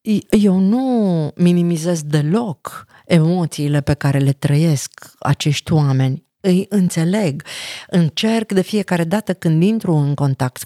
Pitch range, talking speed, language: 150-215 Hz, 120 wpm, Romanian